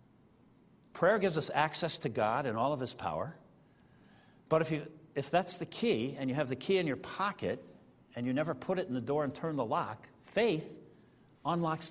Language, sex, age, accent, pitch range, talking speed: English, male, 60-79, American, 145-200 Hz, 200 wpm